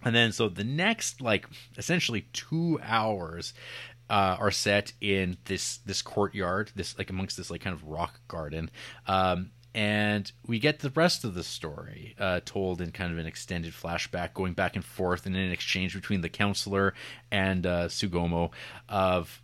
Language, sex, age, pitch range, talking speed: English, male, 30-49, 95-125 Hz, 175 wpm